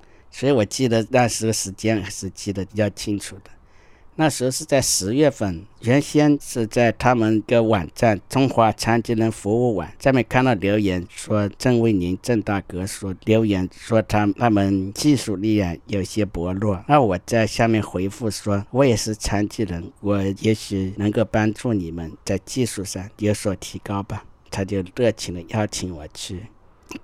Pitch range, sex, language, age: 95-115 Hz, male, Chinese, 50-69